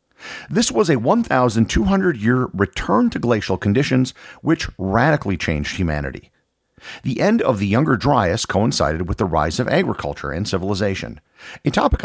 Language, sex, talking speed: English, male, 140 wpm